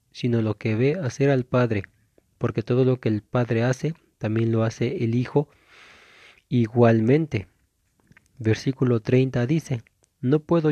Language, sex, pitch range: Spanish, male, 115-145 Hz